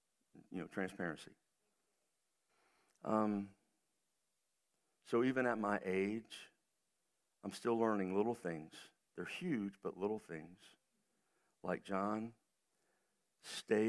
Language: English